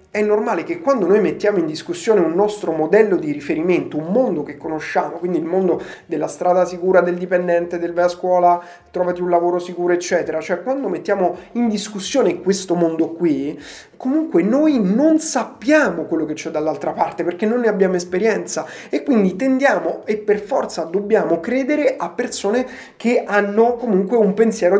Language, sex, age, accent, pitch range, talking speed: Italian, male, 30-49, native, 170-215 Hz, 170 wpm